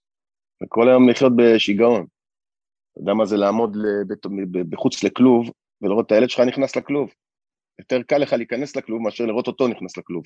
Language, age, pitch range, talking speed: Hebrew, 40-59, 100-135 Hz, 165 wpm